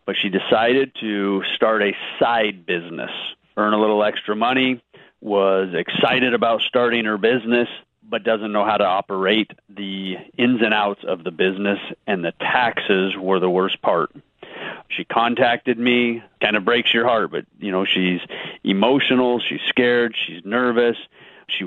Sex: male